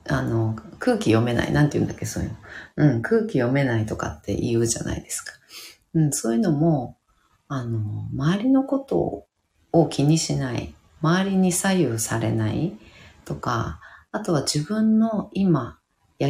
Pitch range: 110-165 Hz